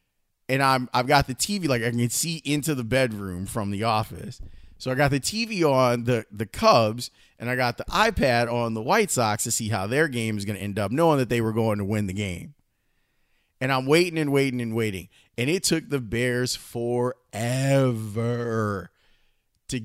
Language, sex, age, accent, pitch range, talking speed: English, male, 30-49, American, 110-135 Hz, 205 wpm